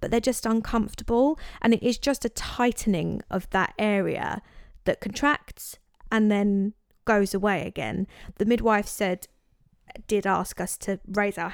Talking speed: 150 wpm